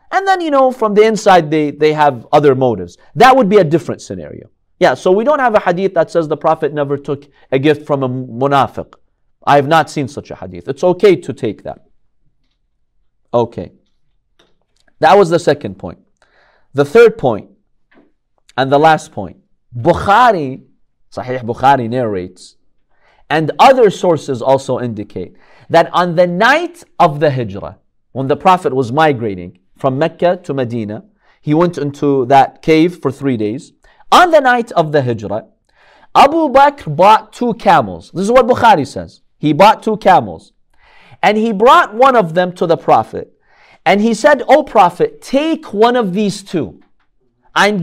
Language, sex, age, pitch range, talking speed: English, male, 40-59, 135-215 Hz, 170 wpm